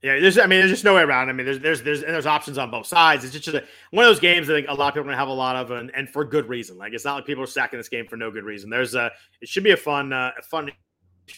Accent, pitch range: American, 130-180 Hz